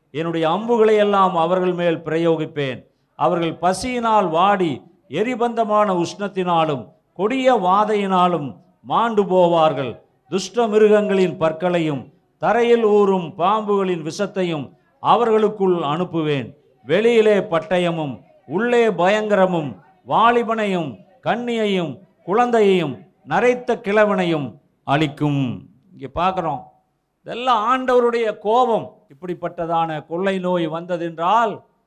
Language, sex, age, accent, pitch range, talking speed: Tamil, male, 50-69, native, 165-210 Hz, 80 wpm